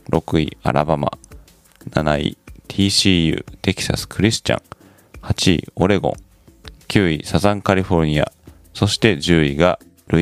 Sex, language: male, Japanese